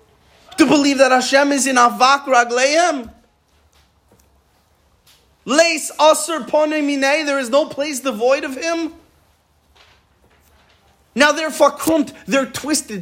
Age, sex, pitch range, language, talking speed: 30-49, male, 210-300 Hz, English, 95 wpm